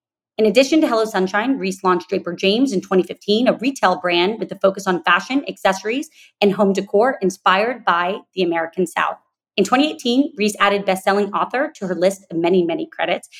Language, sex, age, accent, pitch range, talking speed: English, female, 30-49, American, 180-230 Hz, 185 wpm